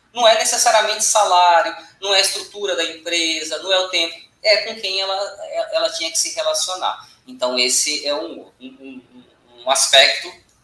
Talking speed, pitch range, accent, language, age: 170 wpm, 165-250 Hz, Brazilian, Portuguese, 20-39